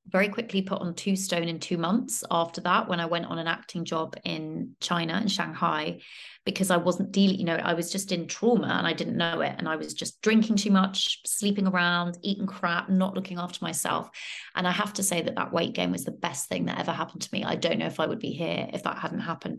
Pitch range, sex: 170-195 Hz, female